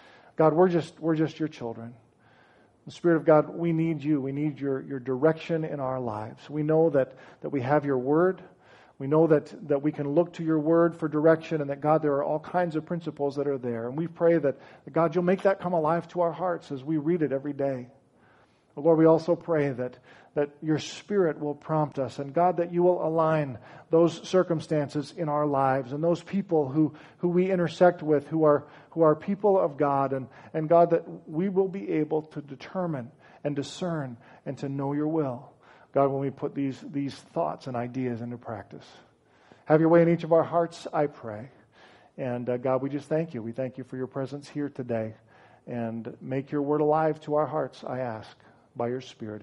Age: 40-59